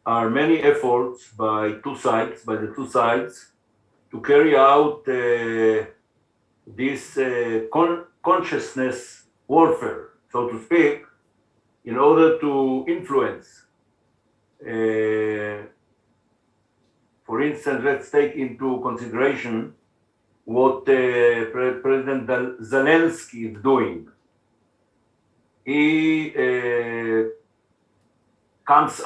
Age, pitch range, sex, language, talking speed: 60-79, 115-145 Hz, male, Czech, 90 wpm